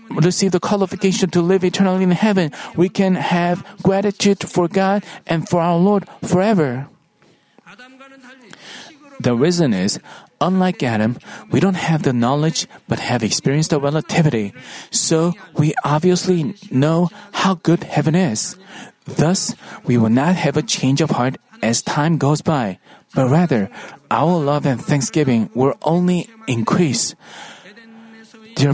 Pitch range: 150-185 Hz